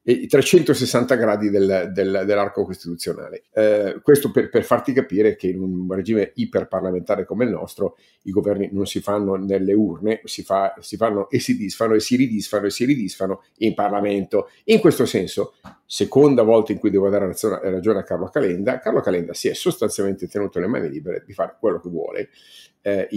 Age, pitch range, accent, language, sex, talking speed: 50-69, 95-110 Hz, native, Italian, male, 185 wpm